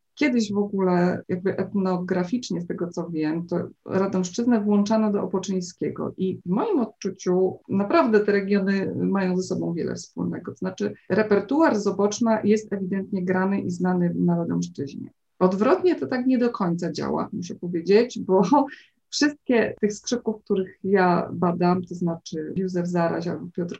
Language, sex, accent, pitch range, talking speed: Polish, female, native, 180-220 Hz, 150 wpm